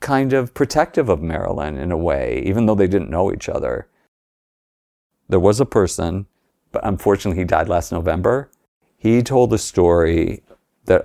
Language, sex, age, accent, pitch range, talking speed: English, male, 50-69, American, 85-110 Hz, 165 wpm